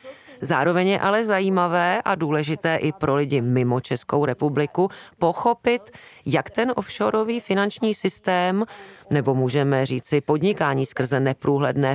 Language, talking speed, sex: Czech, 120 wpm, female